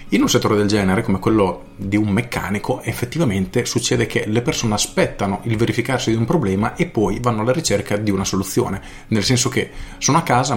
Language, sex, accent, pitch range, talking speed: Italian, male, native, 100-130 Hz, 200 wpm